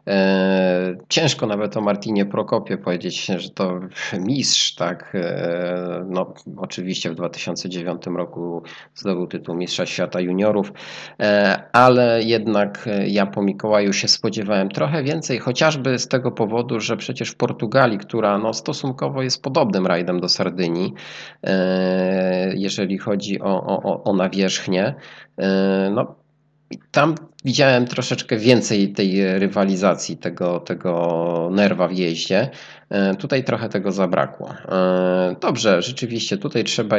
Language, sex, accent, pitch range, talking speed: Polish, male, native, 90-110 Hz, 115 wpm